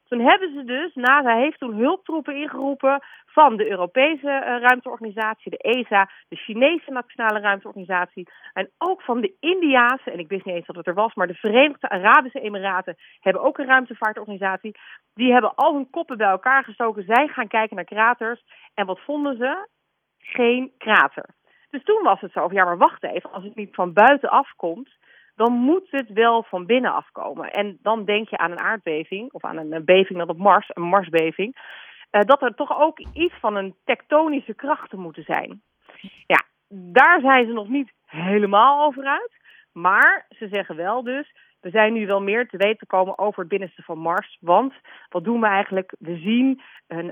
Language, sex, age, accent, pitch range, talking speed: Dutch, female, 40-59, Dutch, 195-270 Hz, 185 wpm